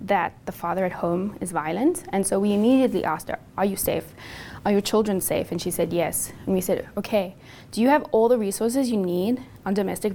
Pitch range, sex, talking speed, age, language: 175-215 Hz, female, 225 wpm, 20-39, English